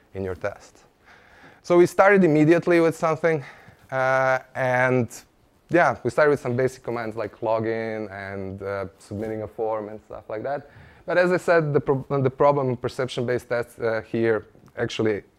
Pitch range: 110-145 Hz